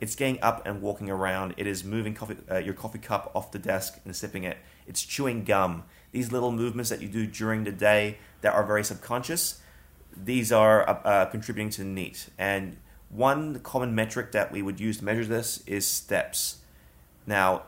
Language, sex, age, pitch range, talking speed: English, male, 30-49, 95-115 Hz, 190 wpm